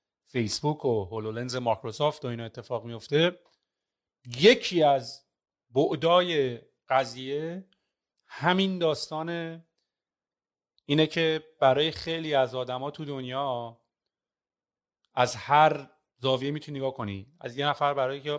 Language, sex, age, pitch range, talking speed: Persian, male, 30-49, 120-145 Hz, 110 wpm